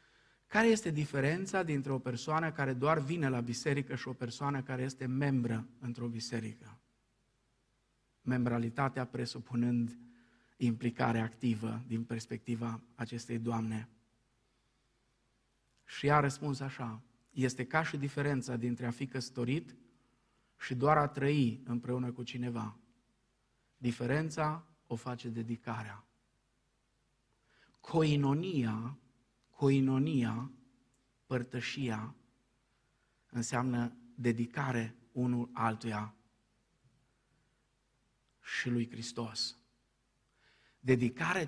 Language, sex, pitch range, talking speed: Romanian, male, 115-135 Hz, 90 wpm